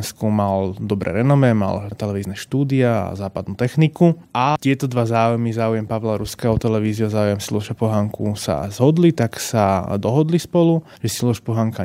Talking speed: 150 wpm